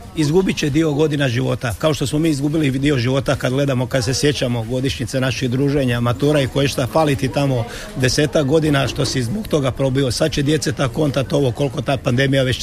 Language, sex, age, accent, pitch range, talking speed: Croatian, male, 50-69, native, 130-150 Hz, 205 wpm